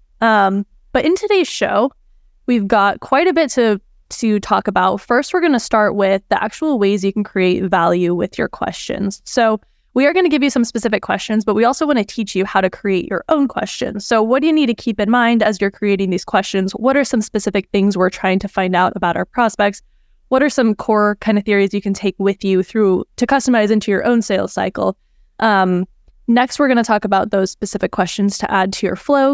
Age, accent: 10-29, American